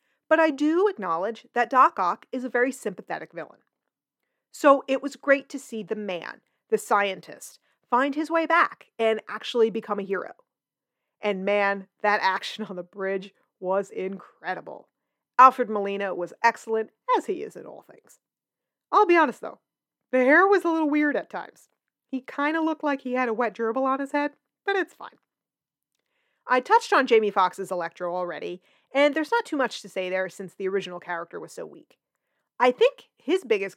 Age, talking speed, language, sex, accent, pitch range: 40-59, 185 wpm, English, female, American, 195-290 Hz